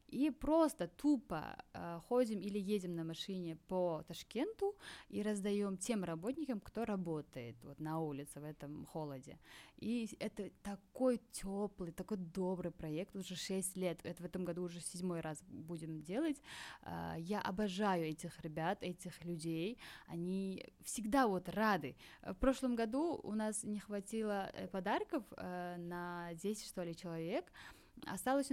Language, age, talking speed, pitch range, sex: Russian, 20-39, 135 wpm, 175-245 Hz, female